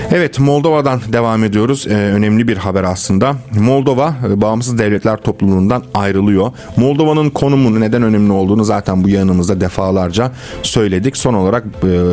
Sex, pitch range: male, 95-125 Hz